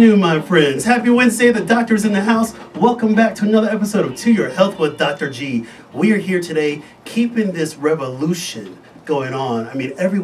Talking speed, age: 195 wpm, 30-49